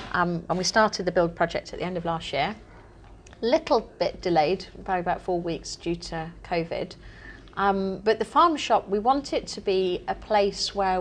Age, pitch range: 30-49, 175-215 Hz